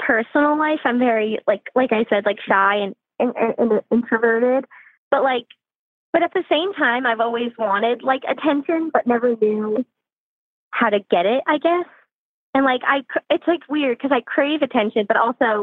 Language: English